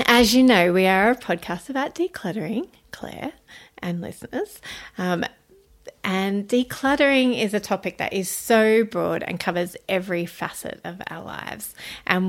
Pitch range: 185-235 Hz